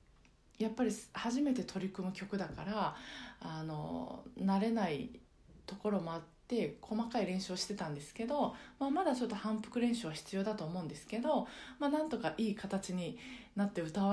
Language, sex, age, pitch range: Japanese, female, 20-39, 170-230 Hz